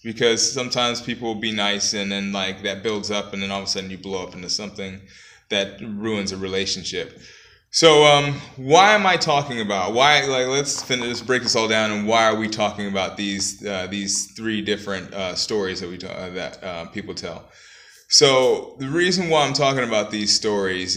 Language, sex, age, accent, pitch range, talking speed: English, male, 20-39, American, 100-125 Hz, 200 wpm